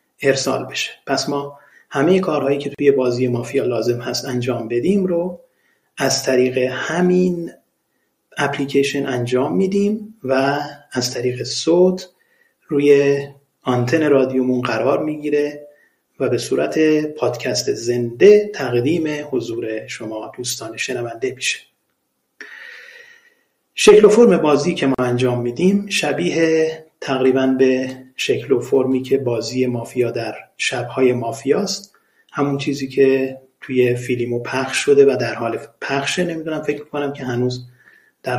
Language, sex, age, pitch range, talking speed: Persian, male, 30-49, 125-180 Hz, 125 wpm